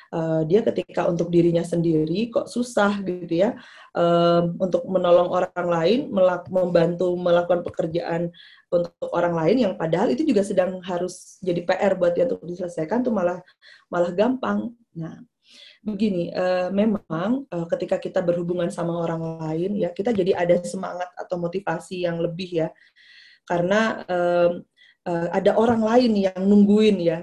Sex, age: female, 20-39